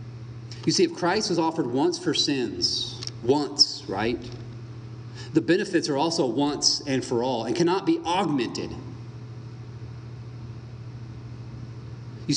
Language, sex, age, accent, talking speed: English, male, 30-49, American, 115 wpm